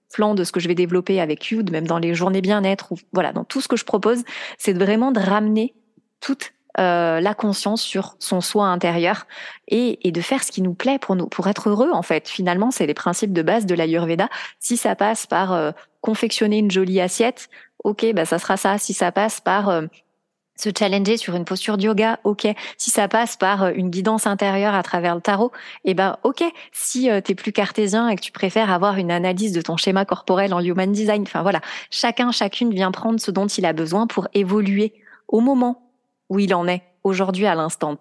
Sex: female